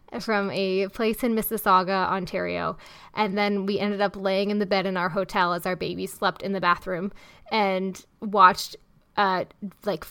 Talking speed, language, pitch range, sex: 170 wpm, English, 185-235 Hz, female